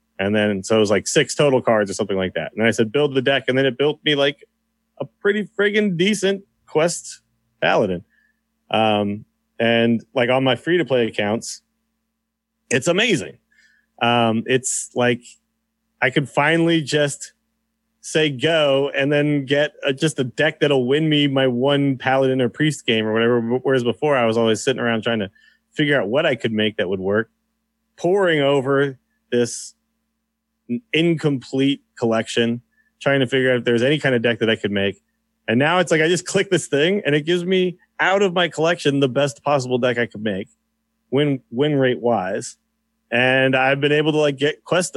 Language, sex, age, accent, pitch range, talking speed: English, male, 30-49, American, 120-180 Hz, 190 wpm